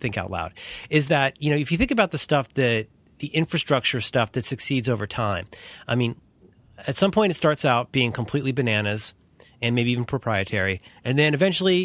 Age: 30-49